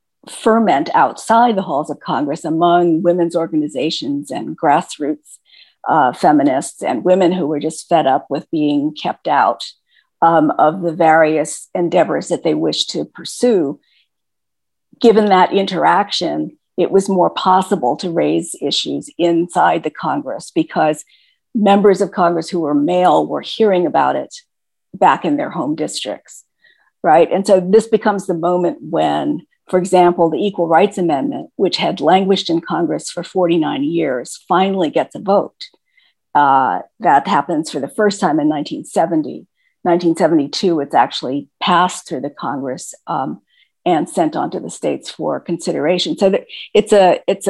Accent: American